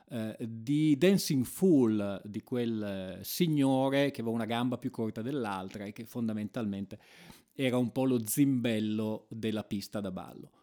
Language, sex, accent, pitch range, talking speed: Italian, male, native, 105-140 Hz, 140 wpm